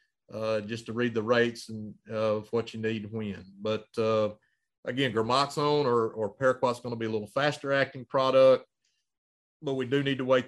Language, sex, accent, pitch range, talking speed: English, male, American, 110-130 Hz, 200 wpm